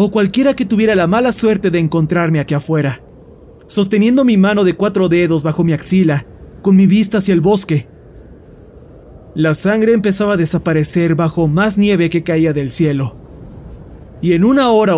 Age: 30-49